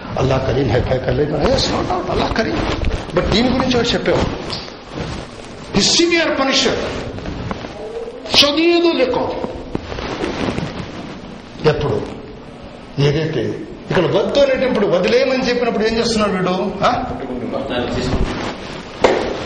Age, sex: 60-79, male